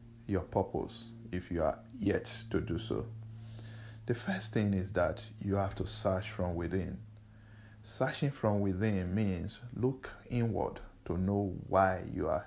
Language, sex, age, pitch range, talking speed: English, male, 50-69, 95-115 Hz, 150 wpm